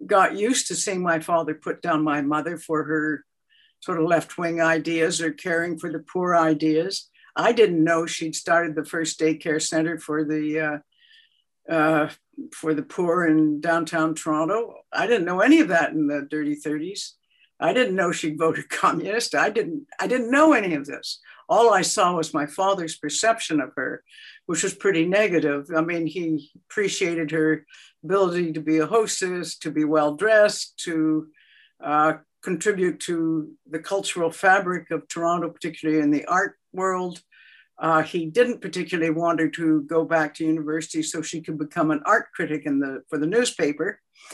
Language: English